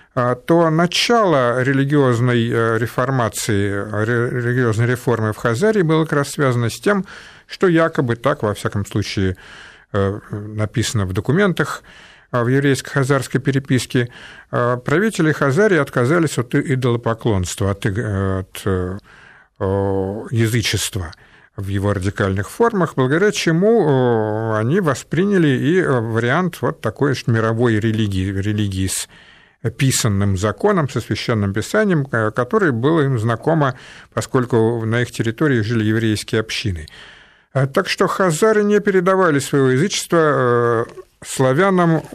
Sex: male